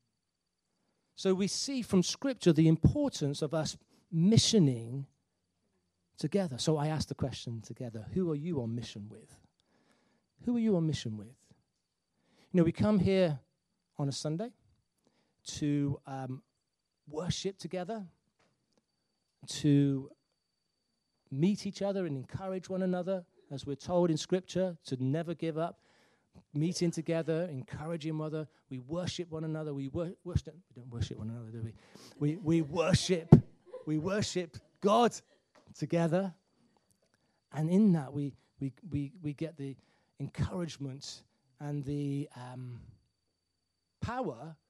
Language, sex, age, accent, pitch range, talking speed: English, male, 40-59, British, 130-170 Hz, 130 wpm